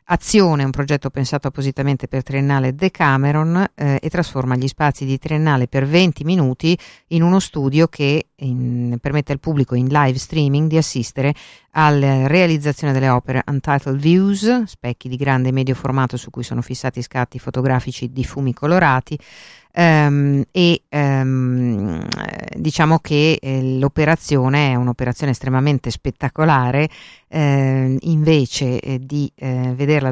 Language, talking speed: Italian, 135 wpm